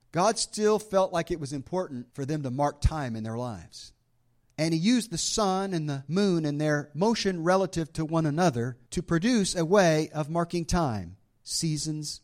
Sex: male